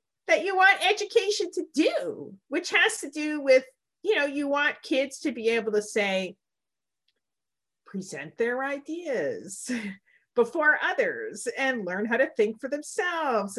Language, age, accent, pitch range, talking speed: English, 40-59, American, 225-310 Hz, 145 wpm